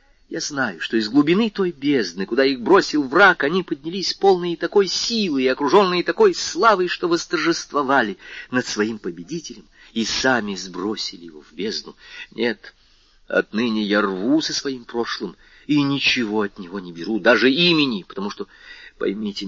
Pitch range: 110-180 Hz